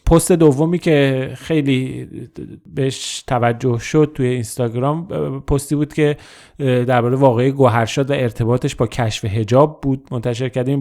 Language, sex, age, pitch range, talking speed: Persian, male, 30-49, 125-150 Hz, 130 wpm